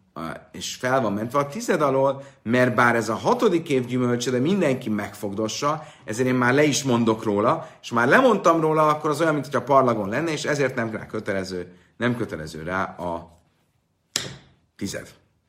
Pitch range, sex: 100-140 Hz, male